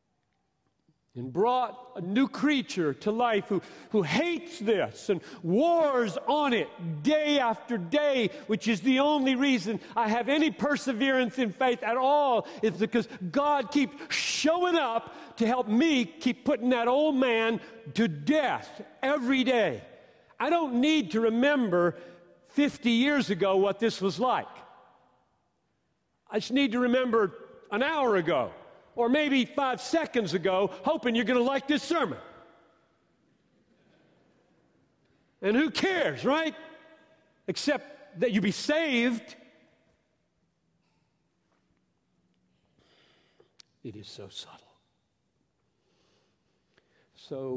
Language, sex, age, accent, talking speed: English, male, 50-69, American, 120 wpm